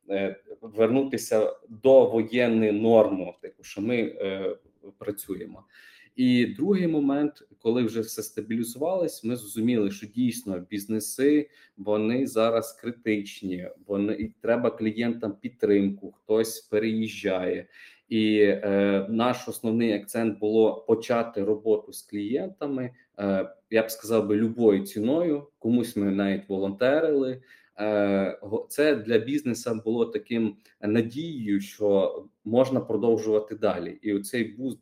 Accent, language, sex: native, Ukrainian, male